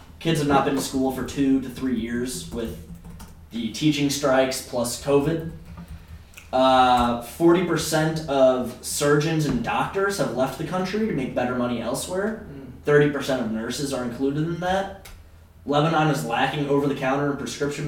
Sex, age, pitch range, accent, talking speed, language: male, 10-29, 115-145 Hz, American, 165 wpm, English